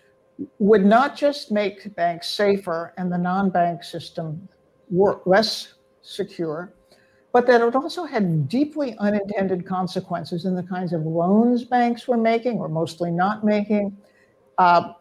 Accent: American